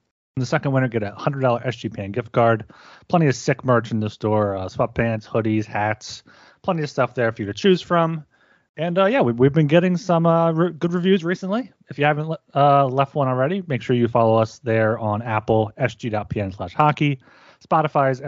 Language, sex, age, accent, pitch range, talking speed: English, male, 30-49, American, 110-155 Hz, 205 wpm